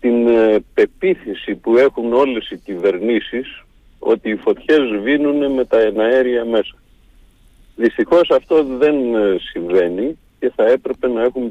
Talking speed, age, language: 125 wpm, 50-69, Greek